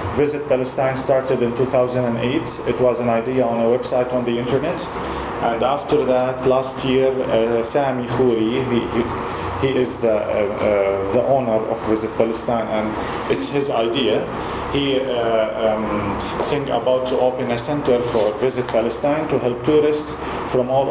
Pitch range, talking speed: 115-135 Hz, 155 wpm